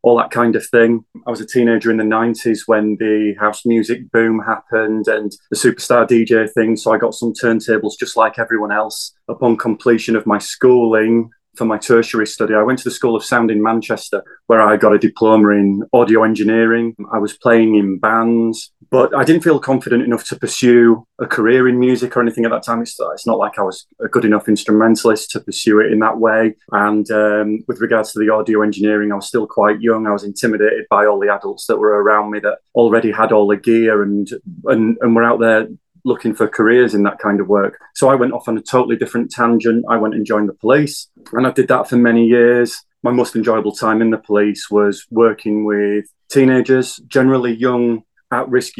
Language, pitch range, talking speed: English, 105-120 Hz, 215 wpm